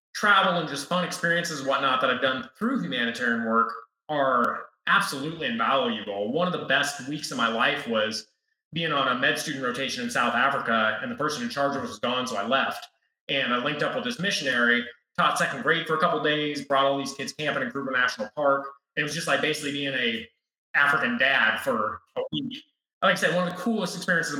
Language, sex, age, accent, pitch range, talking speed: English, male, 20-39, American, 140-185 Hz, 220 wpm